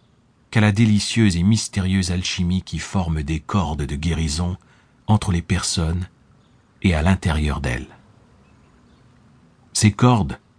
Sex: male